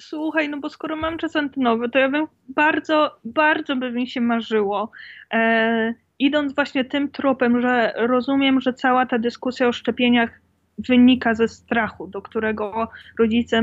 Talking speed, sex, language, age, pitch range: 150 wpm, female, Polish, 20-39, 220-260 Hz